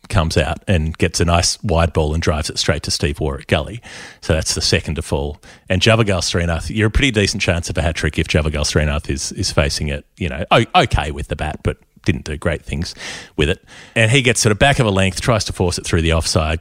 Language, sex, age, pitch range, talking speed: English, male, 30-49, 80-95 Hz, 250 wpm